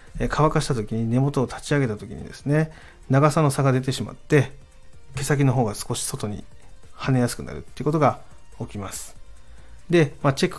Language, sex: Japanese, male